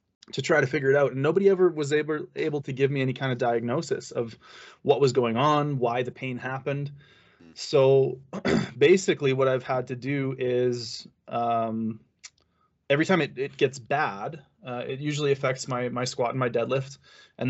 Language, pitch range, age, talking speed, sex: French, 120-135 Hz, 20-39, 185 wpm, male